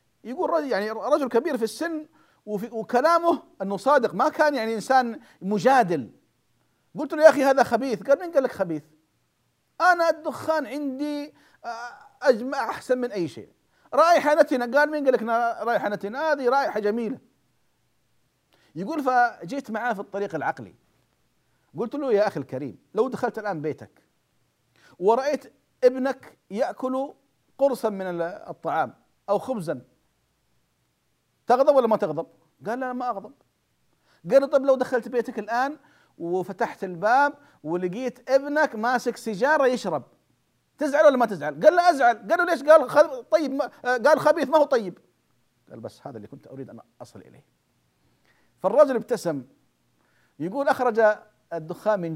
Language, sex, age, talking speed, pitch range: Arabic, male, 50-69, 140 wpm, 200-290 Hz